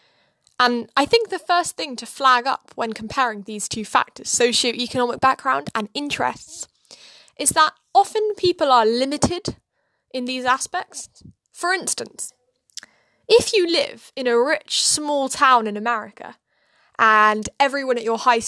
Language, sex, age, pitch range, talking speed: English, female, 10-29, 225-290 Hz, 145 wpm